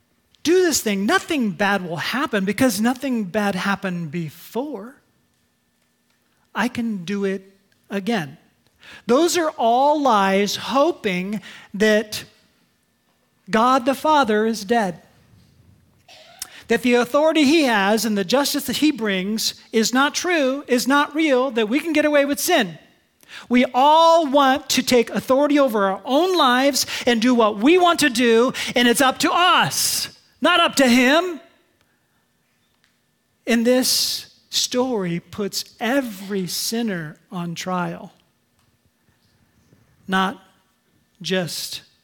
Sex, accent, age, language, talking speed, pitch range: male, American, 40-59, English, 125 wpm, 195-275 Hz